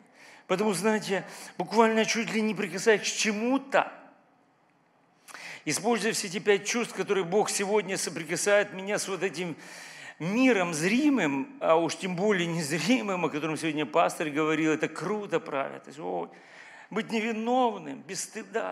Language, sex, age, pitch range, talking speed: Russian, male, 50-69, 165-215 Hz, 140 wpm